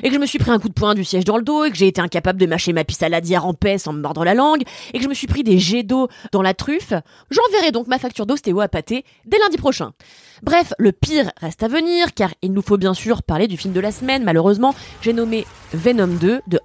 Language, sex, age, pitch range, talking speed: French, female, 20-39, 180-265 Hz, 290 wpm